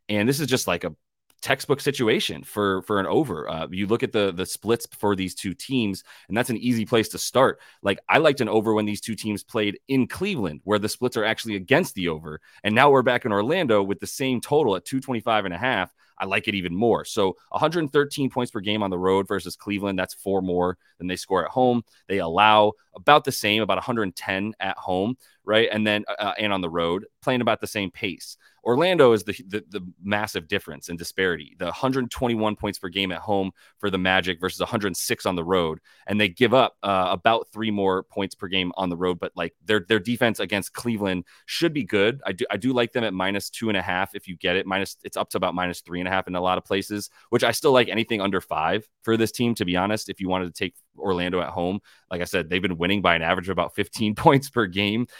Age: 30-49